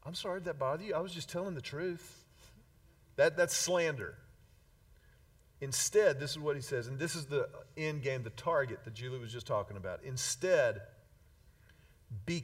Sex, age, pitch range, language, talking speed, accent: male, 40-59, 110-175 Hz, English, 180 wpm, American